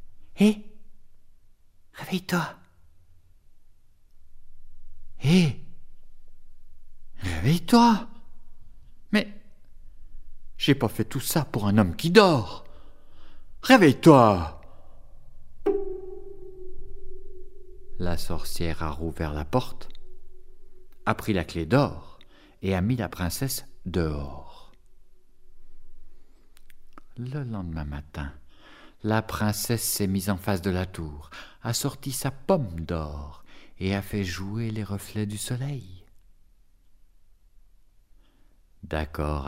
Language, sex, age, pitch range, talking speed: French, male, 60-79, 85-130 Hz, 90 wpm